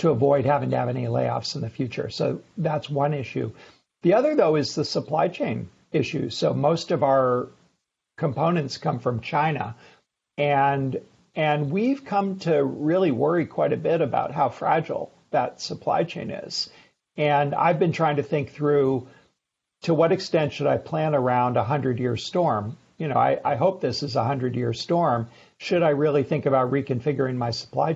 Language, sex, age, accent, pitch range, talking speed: English, male, 60-79, American, 130-155 Hz, 180 wpm